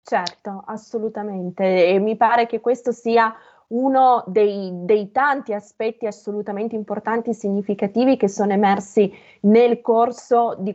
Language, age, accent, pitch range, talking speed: Italian, 20-39, native, 190-225 Hz, 130 wpm